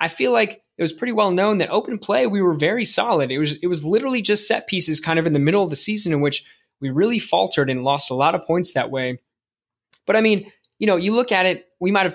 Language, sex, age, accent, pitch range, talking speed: English, male, 20-39, American, 145-190 Hz, 275 wpm